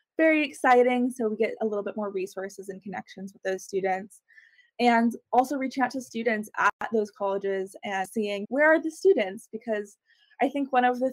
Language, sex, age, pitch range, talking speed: English, female, 20-39, 195-240 Hz, 195 wpm